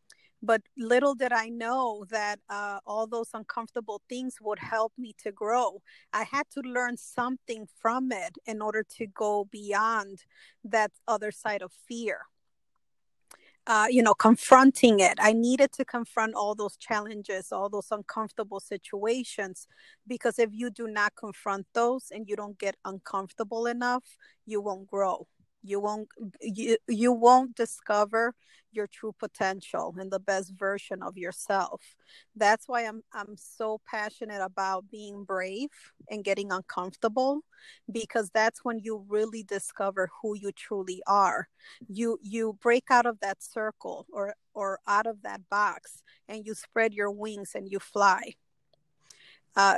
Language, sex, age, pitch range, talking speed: English, female, 30-49, 200-235 Hz, 150 wpm